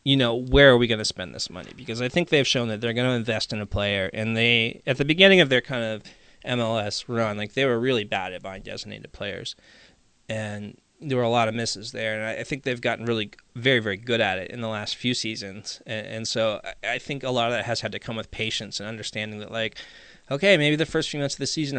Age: 20-39